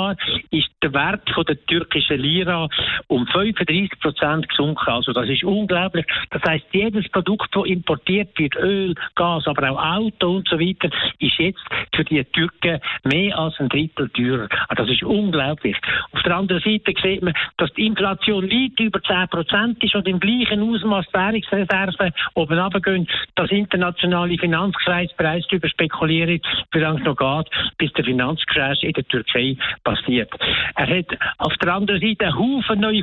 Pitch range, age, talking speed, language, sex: 160-195 Hz, 60-79, 155 wpm, German, male